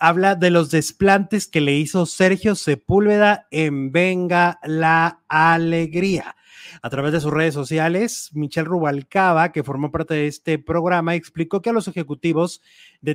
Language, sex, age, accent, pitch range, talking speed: English, male, 30-49, Mexican, 155-190 Hz, 150 wpm